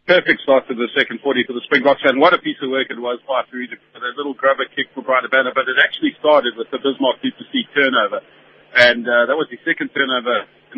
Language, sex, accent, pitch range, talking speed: English, male, British, 120-150 Hz, 245 wpm